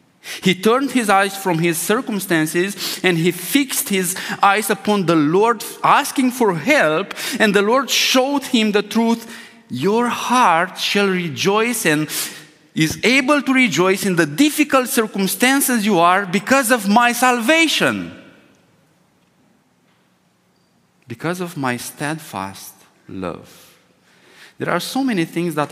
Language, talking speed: English, 130 wpm